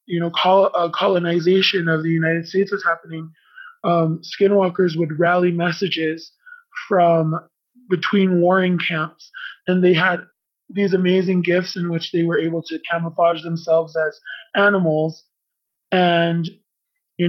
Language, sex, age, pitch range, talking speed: English, male, 20-39, 165-195 Hz, 125 wpm